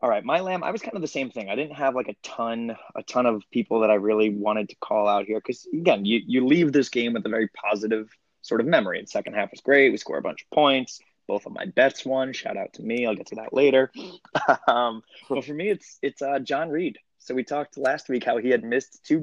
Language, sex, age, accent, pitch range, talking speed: English, male, 20-39, American, 110-135 Hz, 270 wpm